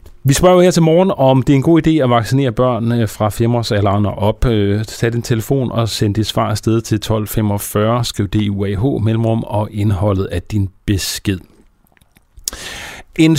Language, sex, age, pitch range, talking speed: Danish, male, 30-49, 105-140 Hz, 170 wpm